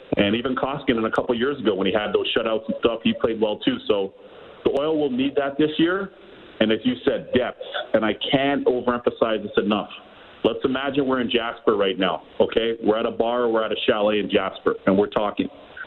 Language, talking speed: English, 225 wpm